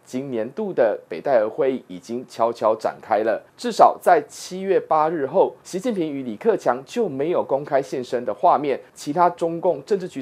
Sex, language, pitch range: male, Chinese, 140-225 Hz